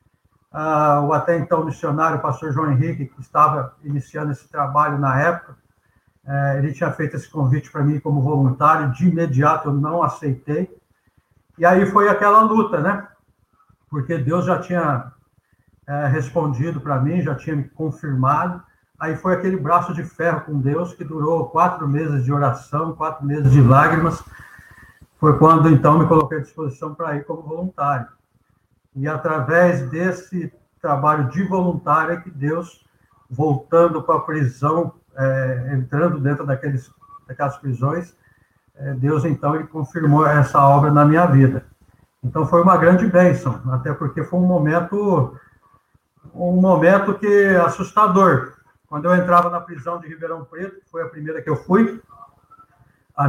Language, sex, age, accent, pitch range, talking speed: Portuguese, male, 60-79, Brazilian, 140-170 Hz, 140 wpm